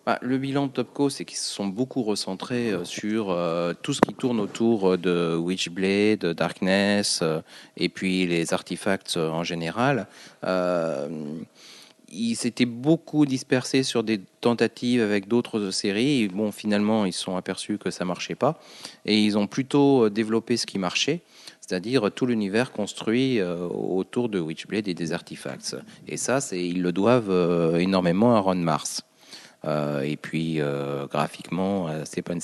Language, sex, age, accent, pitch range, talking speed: French, male, 40-59, French, 85-115 Hz, 155 wpm